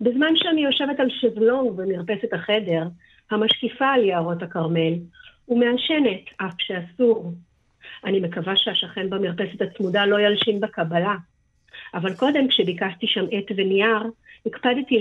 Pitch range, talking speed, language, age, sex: 180-245 Hz, 115 wpm, Hebrew, 50-69, female